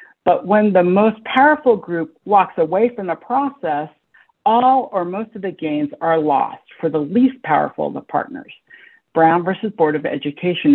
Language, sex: English, female